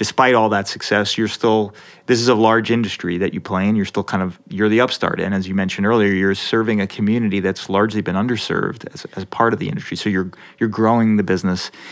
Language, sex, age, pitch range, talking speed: English, male, 30-49, 95-115 Hz, 235 wpm